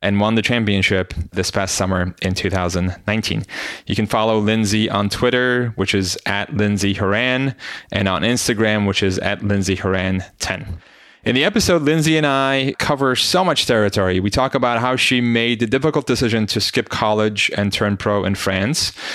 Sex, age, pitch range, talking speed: male, 20-39, 100-125 Hz, 165 wpm